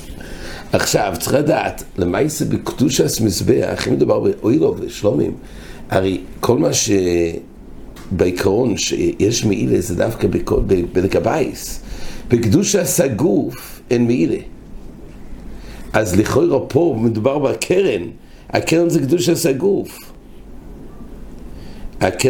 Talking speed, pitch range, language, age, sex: 55 wpm, 100-135 Hz, English, 60-79, male